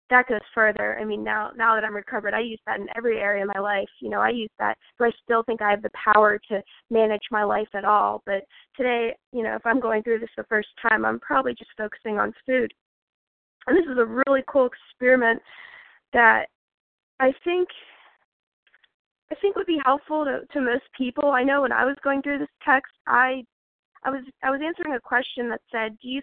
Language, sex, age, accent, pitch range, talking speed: English, female, 20-39, American, 220-270 Hz, 220 wpm